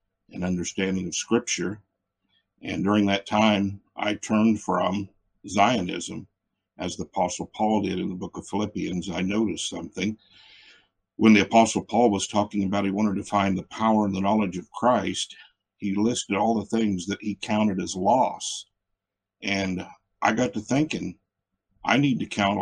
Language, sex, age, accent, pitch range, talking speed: English, male, 60-79, American, 95-110 Hz, 165 wpm